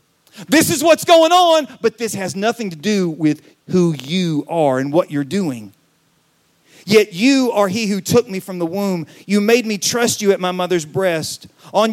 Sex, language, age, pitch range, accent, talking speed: male, English, 40-59, 170-220 Hz, American, 195 wpm